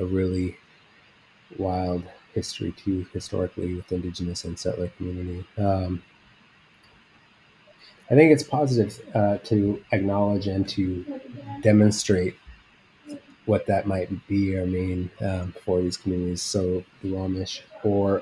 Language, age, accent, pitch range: English, 30-49, American, 90-110 Hz